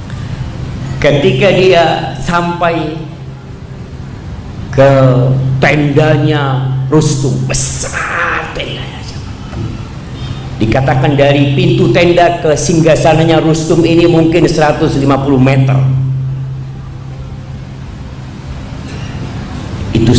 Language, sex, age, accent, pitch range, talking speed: Indonesian, male, 50-69, native, 130-155 Hz, 60 wpm